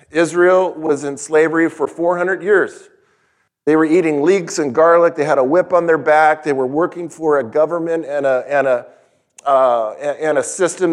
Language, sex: English, male